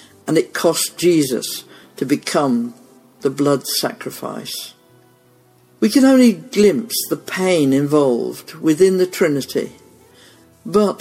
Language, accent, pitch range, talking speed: English, British, 145-205 Hz, 110 wpm